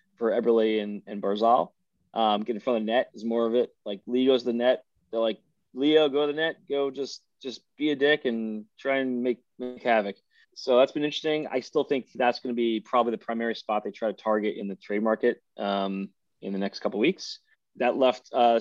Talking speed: 230 wpm